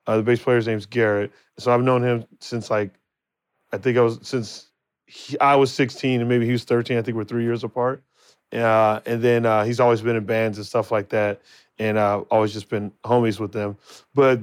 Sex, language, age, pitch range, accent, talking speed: male, English, 30-49, 110-135 Hz, American, 215 wpm